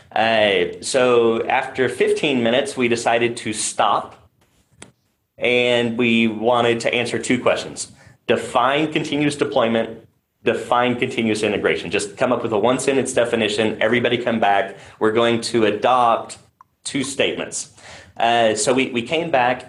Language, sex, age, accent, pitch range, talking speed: English, male, 30-49, American, 115-135 Hz, 135 wpm